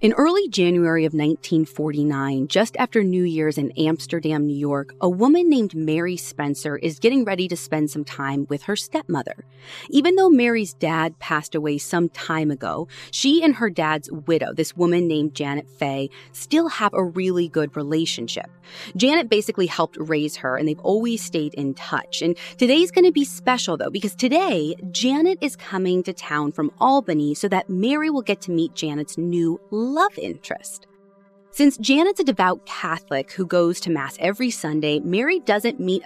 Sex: female